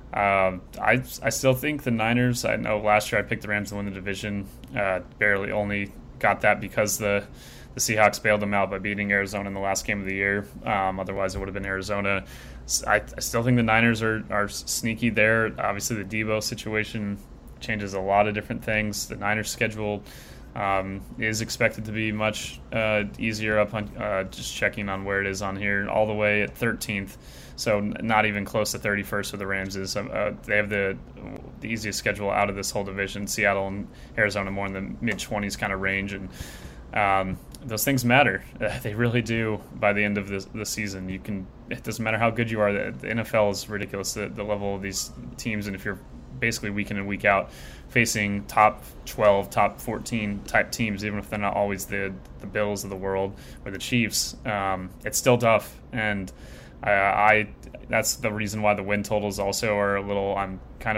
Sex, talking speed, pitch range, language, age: male, 210 wpm, 100-110 Hz, English, 20-39